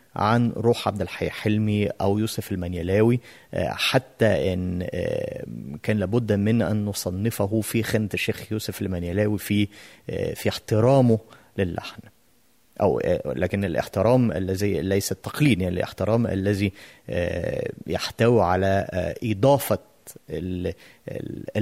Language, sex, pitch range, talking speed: Arabic, male, 100-130 Hz, 100 wpm